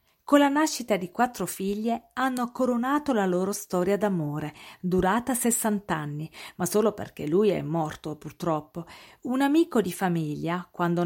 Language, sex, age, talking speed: Italian, female, 40-59, 140 wpm